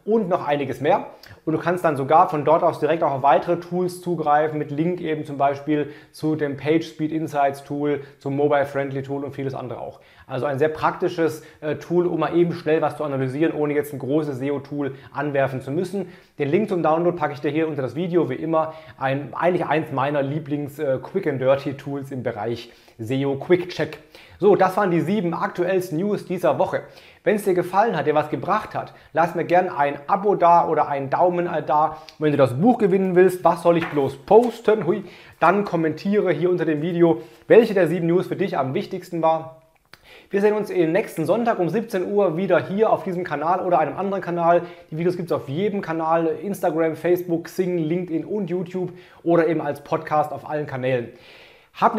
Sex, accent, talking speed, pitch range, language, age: male, German, 195 wpm, 145-180 Hz, German, 30-49